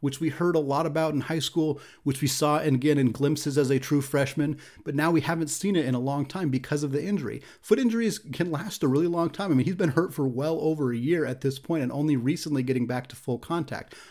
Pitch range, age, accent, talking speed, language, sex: 130-160 Hz, 30-49, American, 270 wpm, English, male